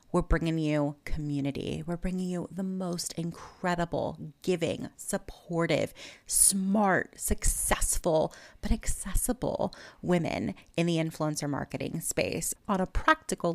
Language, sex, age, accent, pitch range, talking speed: English, female, 30-49, American, 165-195 Hz, 110 wpm